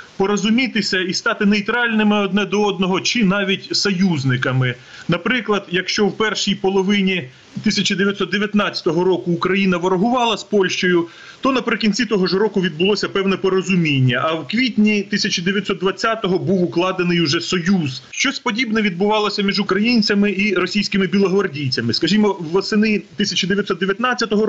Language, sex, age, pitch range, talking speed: Ukrainian, male, 30-49, 170-205 Hz, 120 wpm